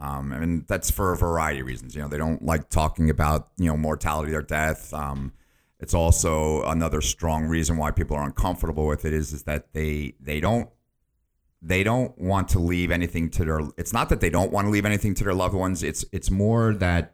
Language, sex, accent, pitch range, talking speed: English, male, American, 75-90 Hz, 225 wpm